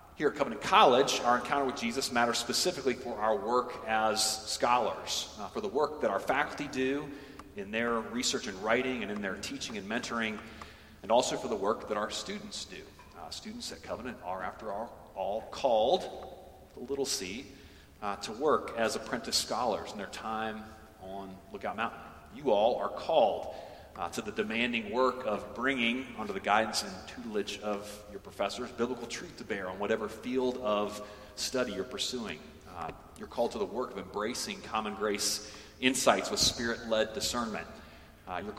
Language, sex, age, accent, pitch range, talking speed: English, male, 40-59, American, 105-125 Hz, 175 wpm